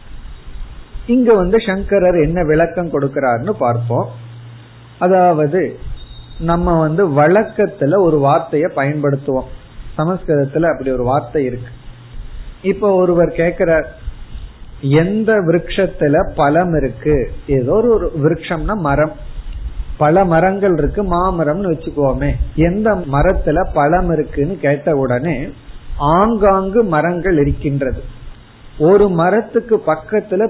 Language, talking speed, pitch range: Tamil, 90 wpm, 140-190 Hz